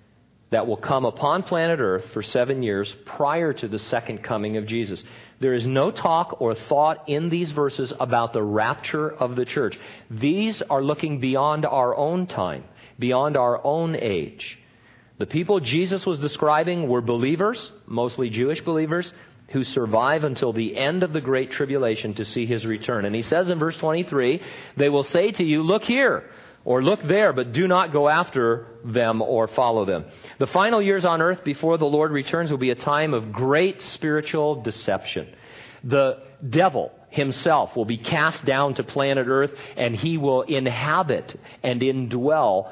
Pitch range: 120-160 Hz